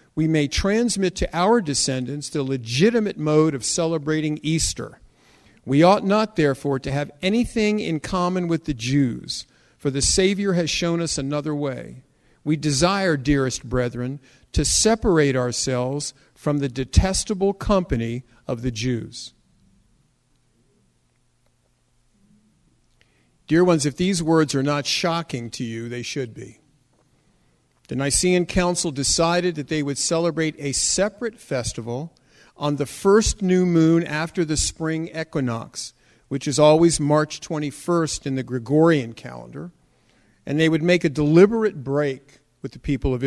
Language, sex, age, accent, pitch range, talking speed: English, male, 50-69, American, 135-175 Hz, 135 wpm